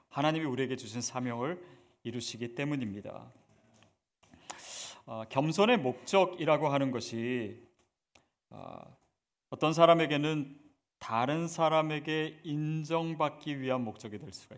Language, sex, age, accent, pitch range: Korean, male, 40-59, native, 115-145 Hz